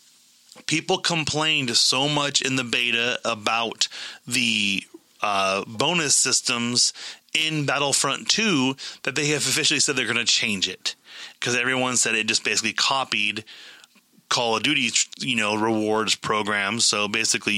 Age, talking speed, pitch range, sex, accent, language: 30-49, 140 wpm, 105-130 Hz, male, American, English